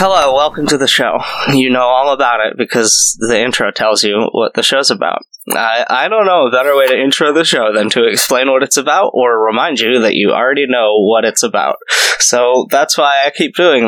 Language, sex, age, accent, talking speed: English, male, 20-39, American, 225 wpm